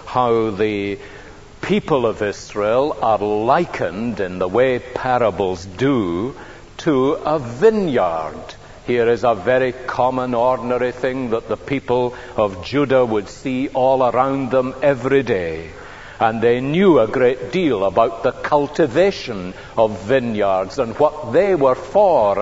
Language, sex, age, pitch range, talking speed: English, male, 60-79, 100-130 Hz, 135 wpm